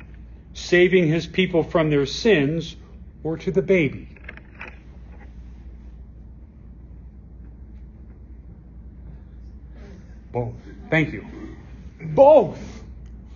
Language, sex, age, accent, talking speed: English, male, 40-59, American, 65 wpm